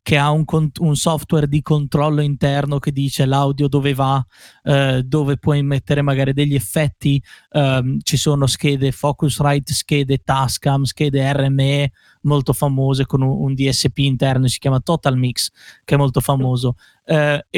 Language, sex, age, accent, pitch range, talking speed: Italian, male, 20-39, native, 140-165 Hz, 155 wpm